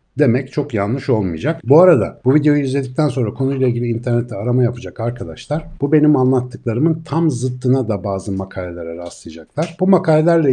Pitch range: 110-140 Hz